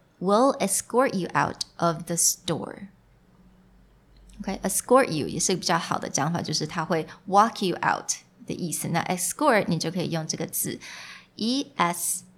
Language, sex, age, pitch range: Chinese, female, 20-39, 170-225 Hz